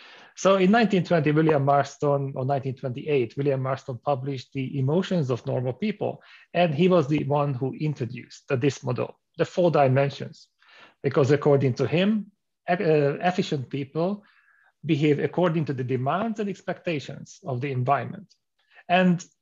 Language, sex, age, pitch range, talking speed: English, male, 40-59, 140-175 Hz, 140 wpm